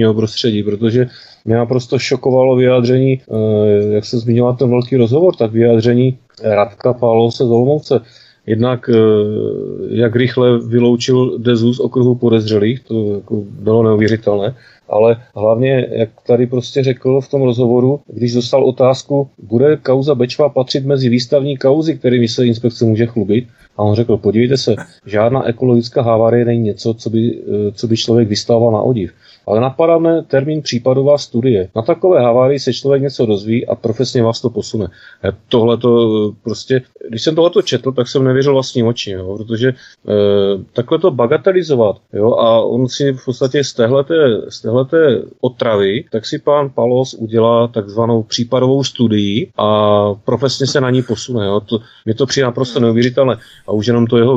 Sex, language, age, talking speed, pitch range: male, Czech, 30-49, 155 wpm, 110-130 Hz